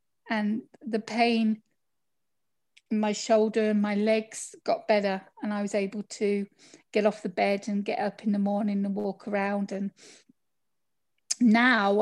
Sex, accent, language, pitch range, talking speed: female, British, English, 210-235 Hz, 155 wpm